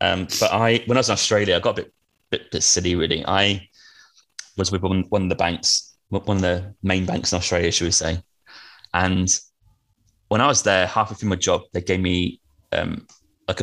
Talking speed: 210 wpm